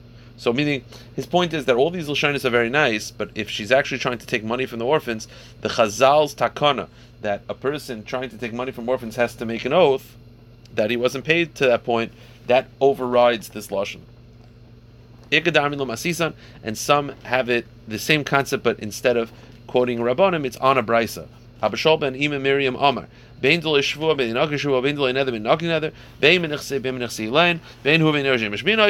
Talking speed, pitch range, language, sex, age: 140 wpm, 115-145 Hz, English, male, 30-49